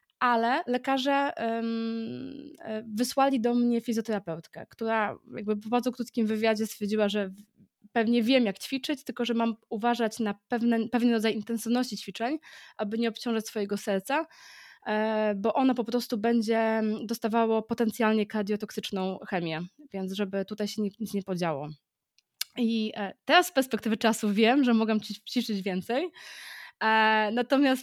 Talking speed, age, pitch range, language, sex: 130 wpm, 20-39, 205-235 Hz, Polish, female